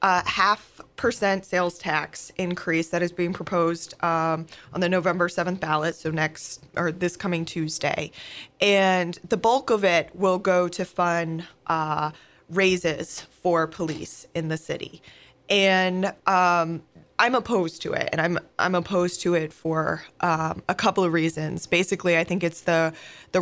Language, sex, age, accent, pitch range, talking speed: English, female, 20-39, American, 160-180 Hz, 160 wpm